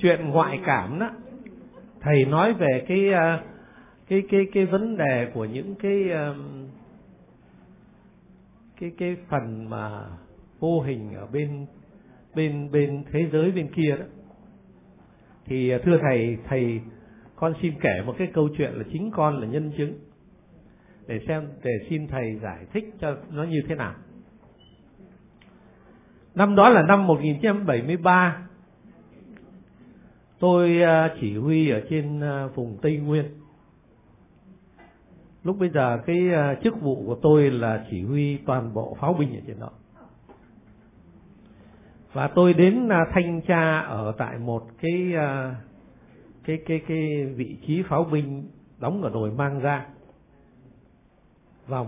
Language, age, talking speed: Vietnamese, 60-79, 130 wpm